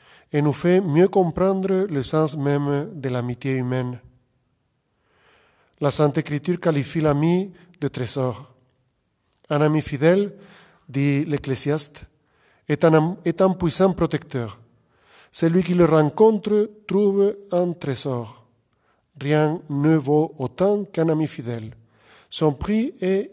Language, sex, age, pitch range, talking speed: French, male, 50-69, 135-175 Hz, 115 wpm